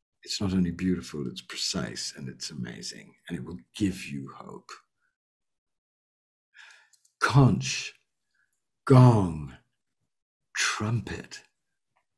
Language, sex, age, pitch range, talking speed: English, male, 60-79, 110-160 Hz, 90 wpm